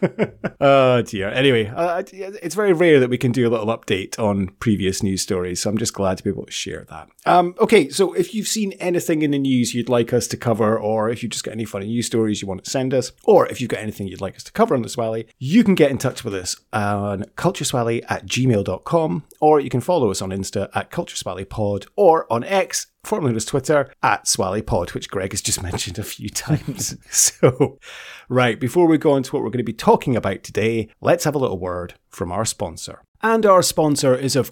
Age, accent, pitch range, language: 30-49, British, 105-145 Hz, English